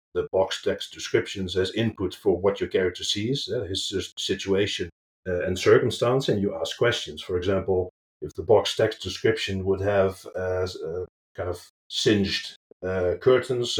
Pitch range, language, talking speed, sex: 95-135 Hz, English, 160 wpm, male